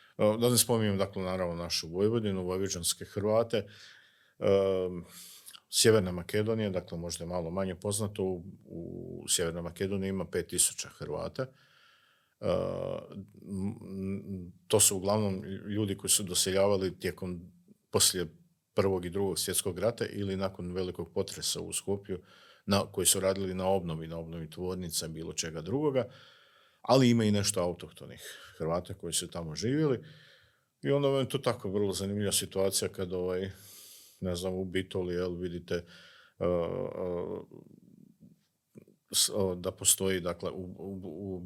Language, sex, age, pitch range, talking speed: Croatian, male, 50-69, 90-105 Hz, 125 wpm